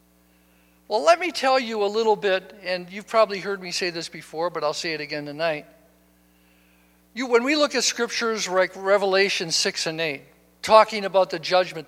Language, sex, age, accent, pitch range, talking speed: English, male, 60-79, American, 160-210 Hz, 180 wpm